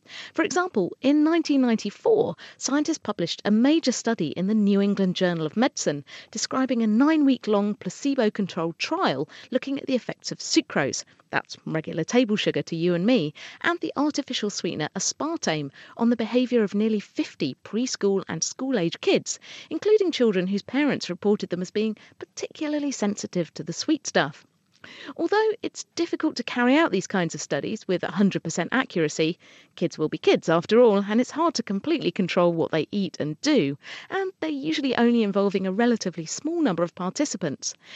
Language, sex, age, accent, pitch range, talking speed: English, female, 40-59, British, 180-275 Hz, 165 wpm